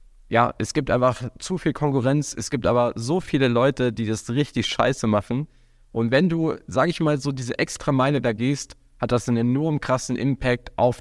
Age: 20-39